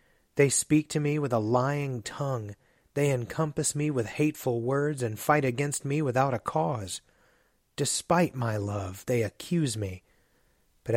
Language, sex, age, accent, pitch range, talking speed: English, male, 30-49, American, 110-135 Hz, 155 wpm